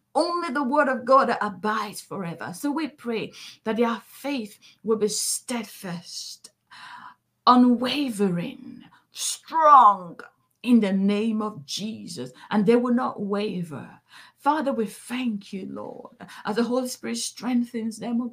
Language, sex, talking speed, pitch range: English, female, 130 wpm, 195-255 Hz